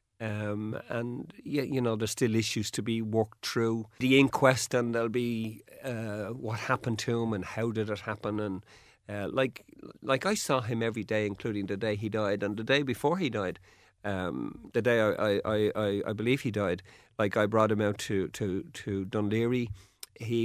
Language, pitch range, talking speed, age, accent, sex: English, 105-120 Hz, 195 wpm, 50-69, Irish, male